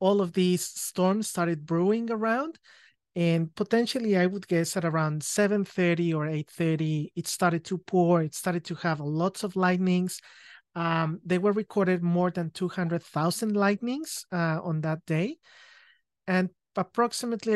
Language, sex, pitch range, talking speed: English, male, 160-195 Hz, 145 wpm